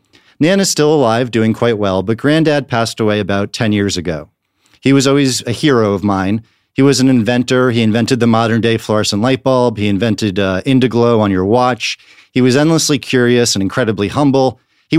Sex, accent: male, American